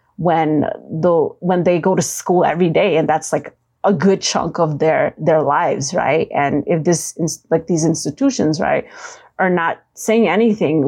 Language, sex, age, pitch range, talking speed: English, female, 30-49, 160-210 Hz, 170 wpm